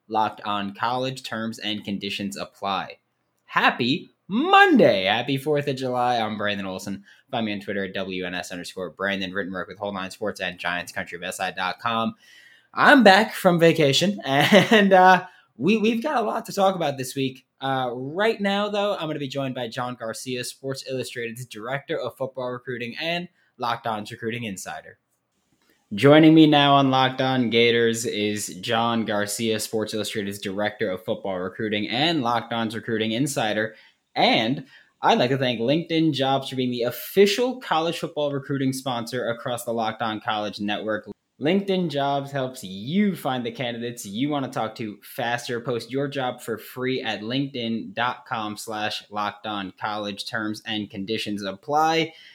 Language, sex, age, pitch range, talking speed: English, male, 20-39, 105-145 Hz, 155 wpm